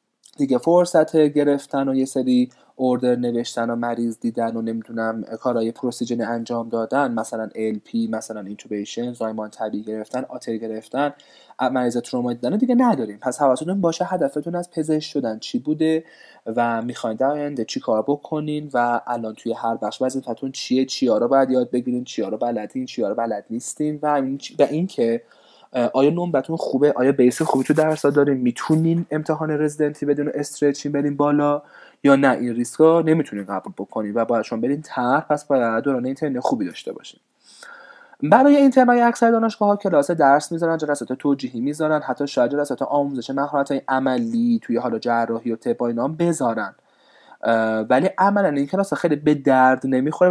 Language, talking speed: Persian, 160 wpm